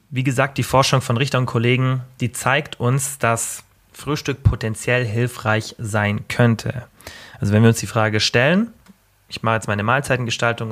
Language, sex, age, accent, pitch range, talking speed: German, male, 30-49, German, 110-130 Hz, 160 wpm